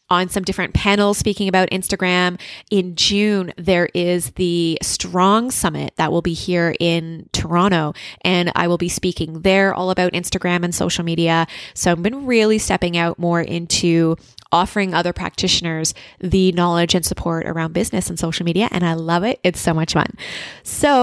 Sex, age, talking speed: female, 20-39, 175 wpm